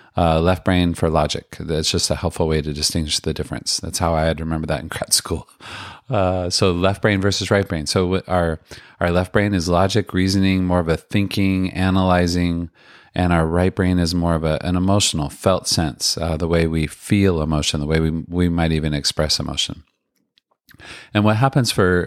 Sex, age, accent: male, 40-59, American